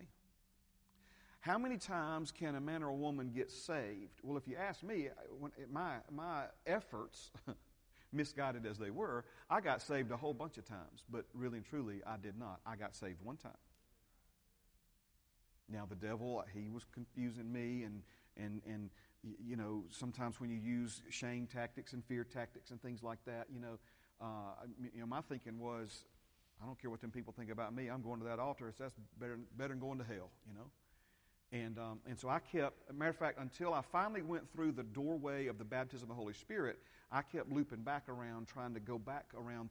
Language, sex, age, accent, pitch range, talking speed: English, male, 40-59, American, 110-140 Hz, 205 wpm